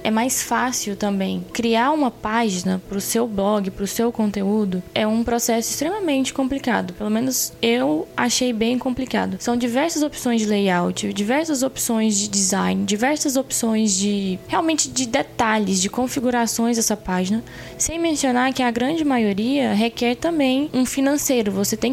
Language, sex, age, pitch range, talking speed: Portuguese, female, 10-29, 215-265 Hz, 155 wpm